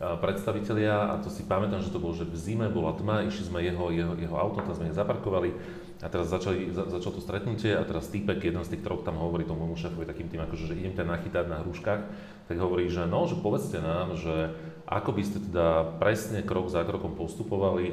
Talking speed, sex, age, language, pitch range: 220 wpm, male, 40-59, Slovak, 85-100 Hz